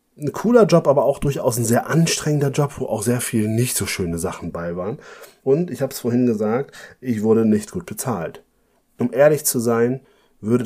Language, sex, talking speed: German, male, 205 wpm